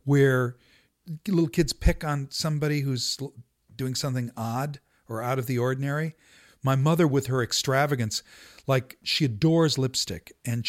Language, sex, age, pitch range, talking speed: English, male, 50-69, 125-170 Hz, 140 wpm